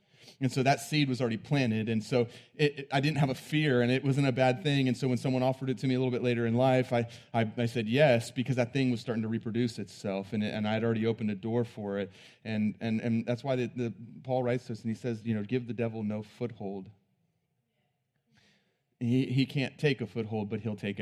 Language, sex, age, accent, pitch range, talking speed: English, male, 30-49, American, 110-130 Hz, 250 wpm